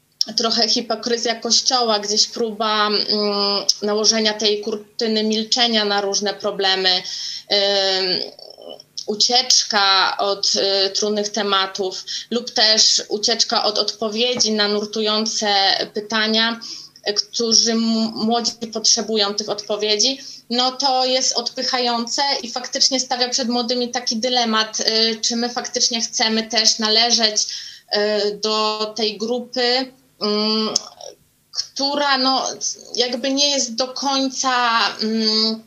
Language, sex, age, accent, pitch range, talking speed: Polish, female, 20-39, native, 210-245 Hz, 100 wpm